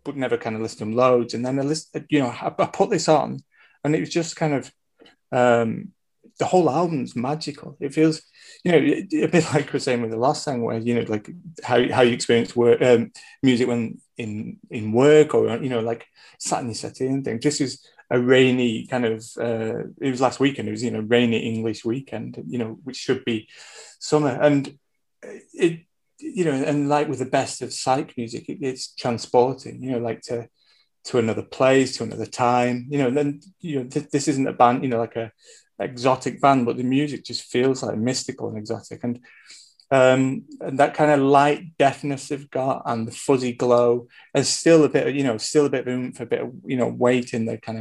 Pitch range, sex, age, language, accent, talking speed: 120-150 Hz, male, 30-49, English, British, 220 wpm